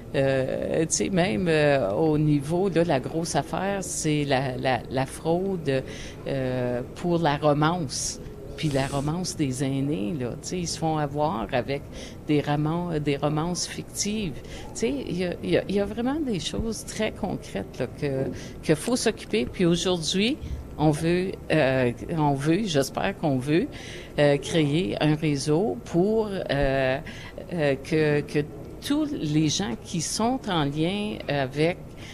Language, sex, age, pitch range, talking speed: French, female, 50-69, 140-175 Hz, 155 wpm